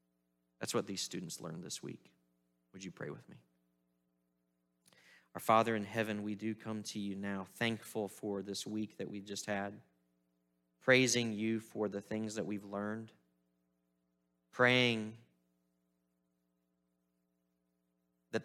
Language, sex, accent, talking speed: English, male, American, 130 wpm